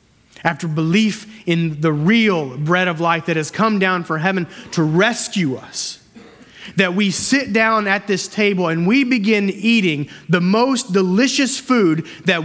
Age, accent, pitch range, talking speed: 30-49, American, 140-190 Hz, 160 wpm